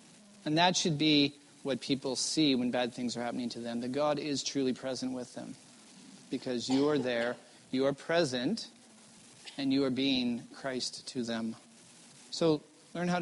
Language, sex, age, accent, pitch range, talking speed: English, male, 40-59, American, 125-155 Hz, 170 wpm